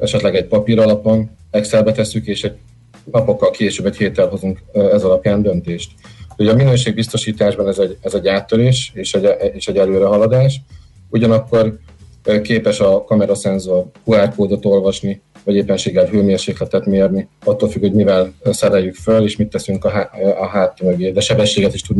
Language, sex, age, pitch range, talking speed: Hungarian, male, 30-49, 95-110 Hz, 150 wpm